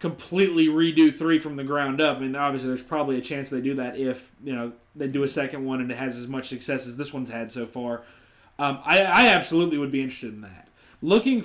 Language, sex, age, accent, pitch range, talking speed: English, male, 20-39, American, 135-190 Hz, 240 wpm